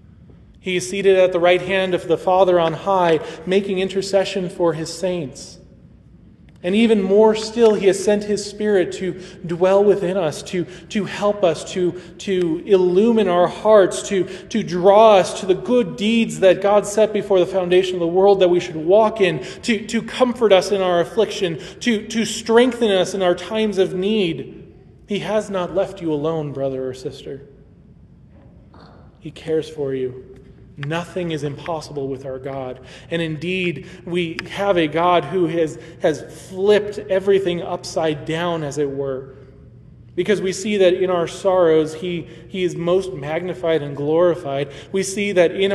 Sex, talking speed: male, 170 wpm